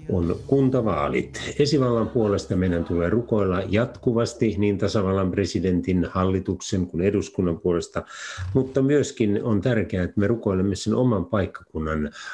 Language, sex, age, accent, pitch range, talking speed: Finnish, male, 50-69, native, 85-110 Hz, 120 wpm